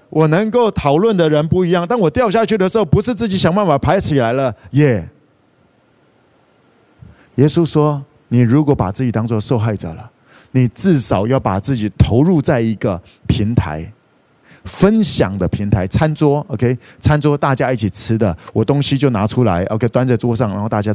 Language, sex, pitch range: Chinese, male, 120-180 Hz